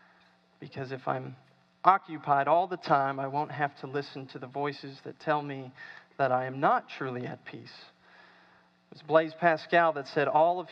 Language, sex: English, male